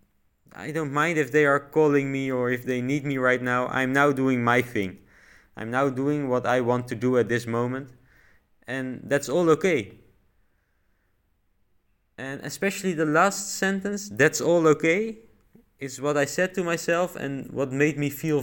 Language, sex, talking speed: English, male, 175 wpm